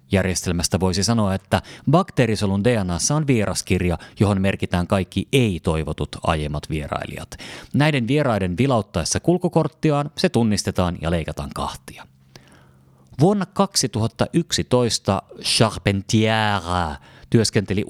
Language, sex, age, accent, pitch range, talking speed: Finnish, male, 30-49, native, 85-120 Hz, 90 wpm